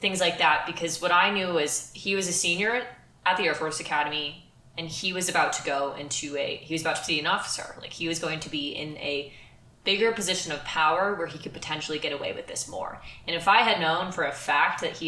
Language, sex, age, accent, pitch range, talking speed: English, female, 20-39, American, 150-175 Hz, 250 wpm